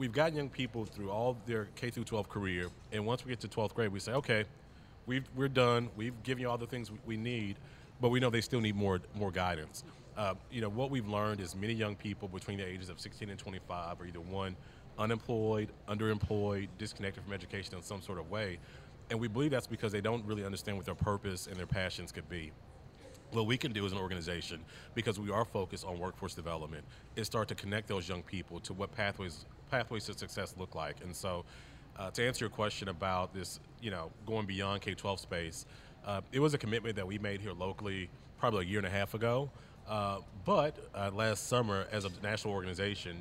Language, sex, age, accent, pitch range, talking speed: English, male, 30-49, American, 95-115 Hz, 220 wpm